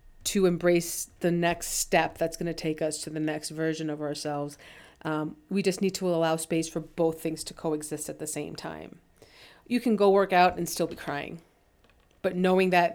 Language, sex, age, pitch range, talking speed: English, female, 30-49, 165-190 Hz, 200 wpm